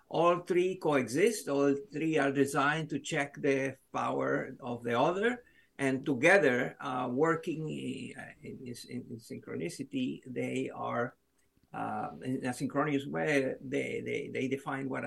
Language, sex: English, male